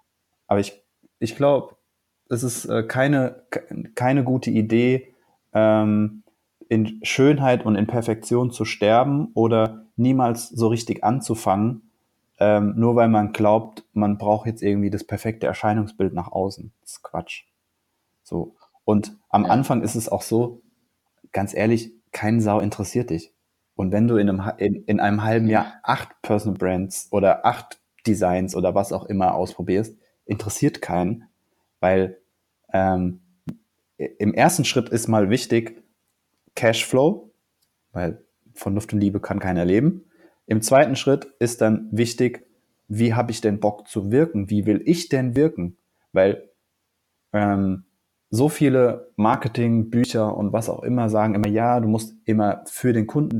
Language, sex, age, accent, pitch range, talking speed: German, male, 30-49, German, 100-120 Hz, 145 wpm